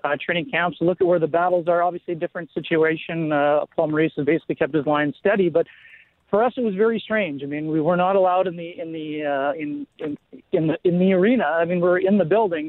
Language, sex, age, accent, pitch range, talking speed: English, male, 40-59, American, 165-195 Hz, 245 wpm